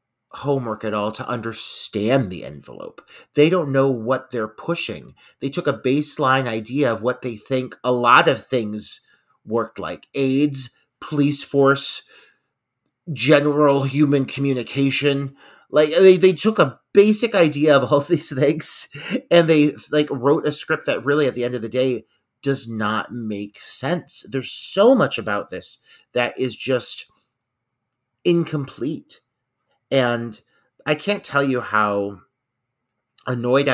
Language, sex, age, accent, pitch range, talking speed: English, male, 30-49, American, 115-145 Hz, 140 wpm